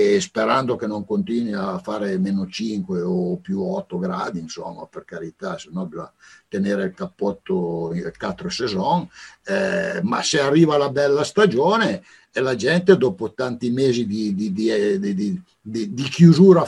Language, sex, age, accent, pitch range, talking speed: Italian, male, 60-79, native, 125-180 Hz, 155 wpm